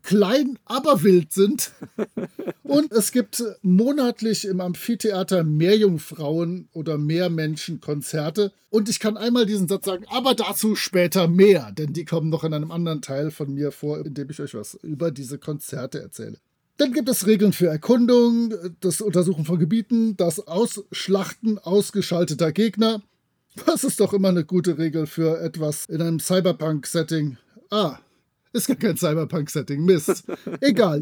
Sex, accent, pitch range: male, German, 165-220 Hz